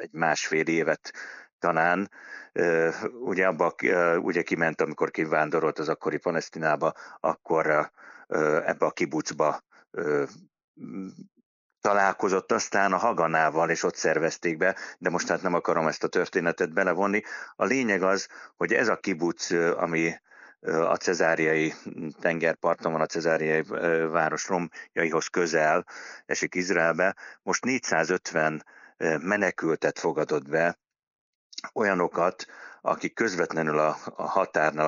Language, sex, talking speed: Hungarian, male, 110 wpm